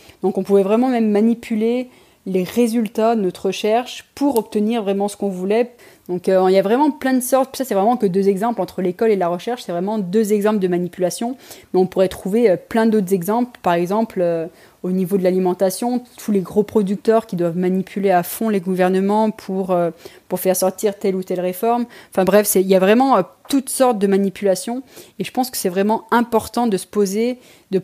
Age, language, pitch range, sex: 20-39, French, 185-230 Hz, female